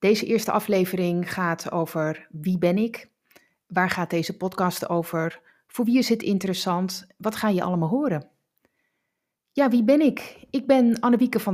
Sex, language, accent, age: female, Dutch, Dutch, 30-49